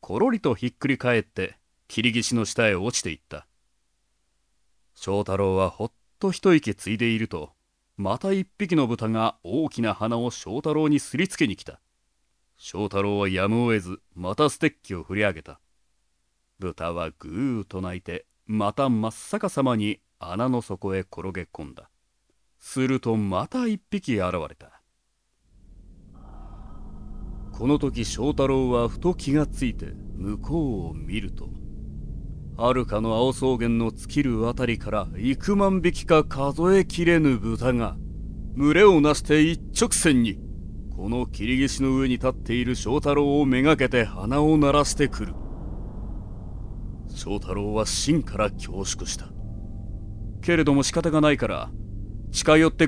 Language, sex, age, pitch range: Japanese, male, 30-49, 95-140 Hz